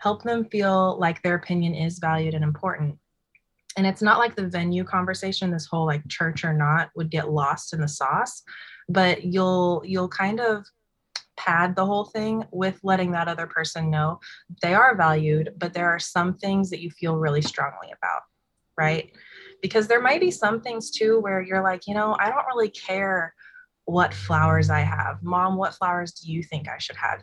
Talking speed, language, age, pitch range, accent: 195 wpm, English, 20-39, 160-195 Hz, American